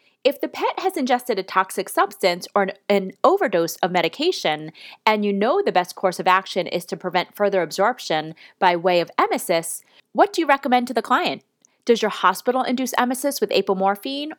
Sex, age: female, 30-49